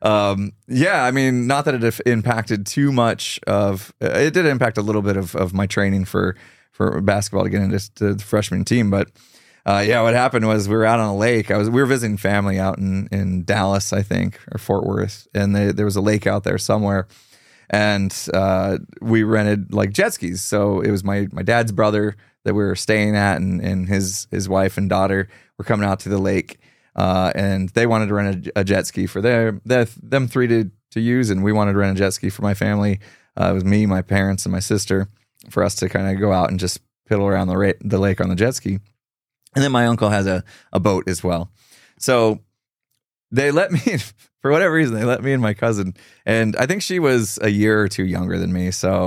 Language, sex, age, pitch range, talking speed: English, male, 20-39, 95-115 Hz, 230 wpm